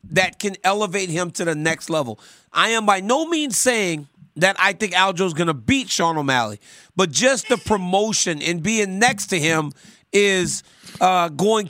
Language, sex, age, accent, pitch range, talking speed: English, male, 30-49, American, 175-225 Hz, 180 wpm